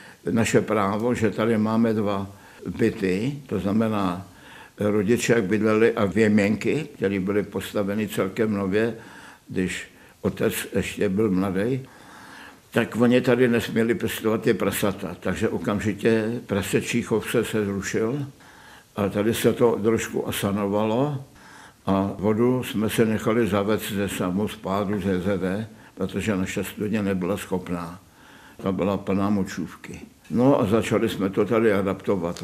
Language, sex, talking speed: Czech, male, 130 wpm